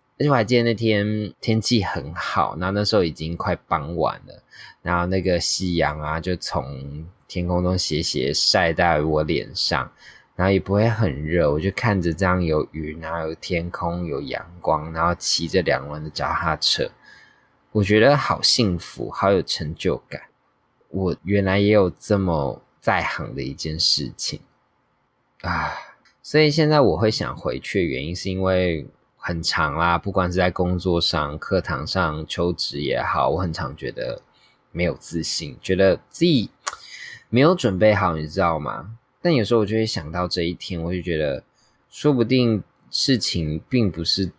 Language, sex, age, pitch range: Chinese, male, 20-39, 85-110 Hz